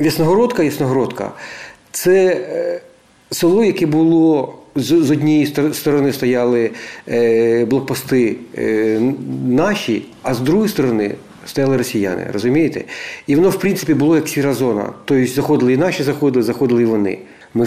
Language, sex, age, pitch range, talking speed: Ukrainian, male, 50-69, 100-135 Hz, 120 wpm